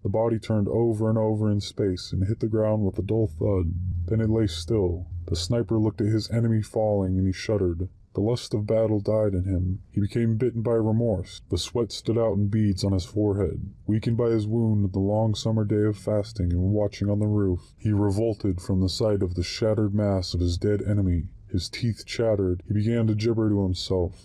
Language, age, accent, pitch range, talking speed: English, 20-39, American, 95-110 Hz, 220 wpm